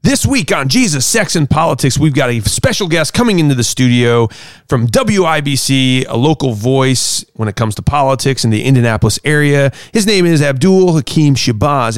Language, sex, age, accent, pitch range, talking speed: English, male, 30-49, American, 120-155 Hz, 180 wpm